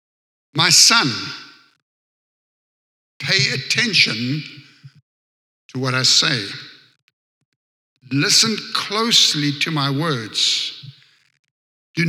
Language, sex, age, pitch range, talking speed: English, male, 60-79, 135-160 Hz, 70 wpm